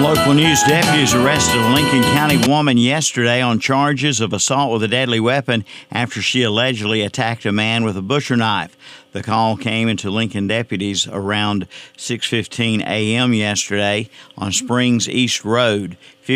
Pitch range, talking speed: 100-120 Hz, 150 wpm